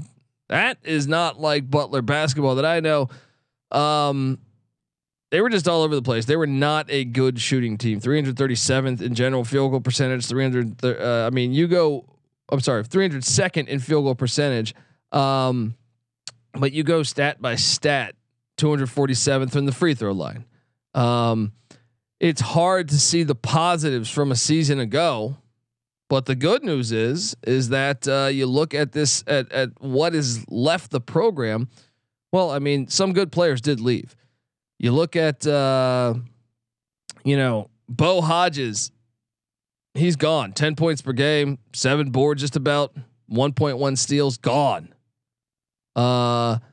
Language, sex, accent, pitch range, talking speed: English, male, American, 125-150 Hz, 160 wpm